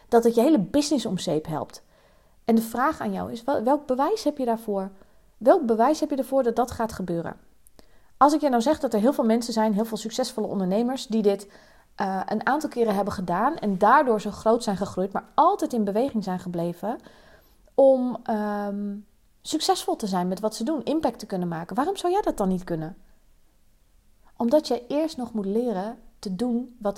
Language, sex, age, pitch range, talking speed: Dutch, female, 30-49, 205-250 Hz, 200 wpm